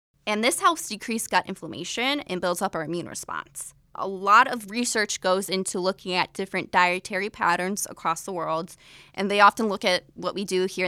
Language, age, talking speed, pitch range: English, 20-39, 195 wpm, 170-200 Hz